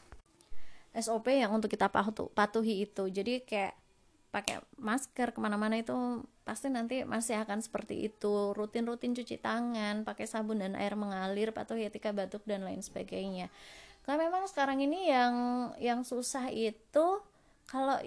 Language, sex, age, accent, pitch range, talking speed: English, female, 20-39, Indonesian, 200-245 Hz, 135 wpm